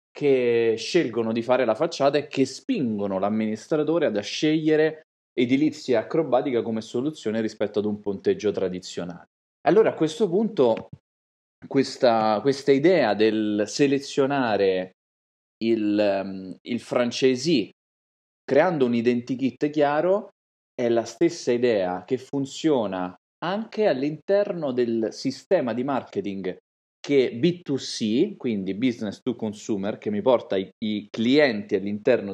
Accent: native